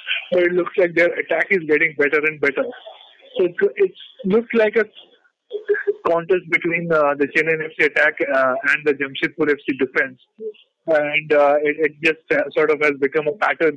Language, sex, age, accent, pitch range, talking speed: English, male, 30-49, Indian, 145-210 Hz, 180 wpm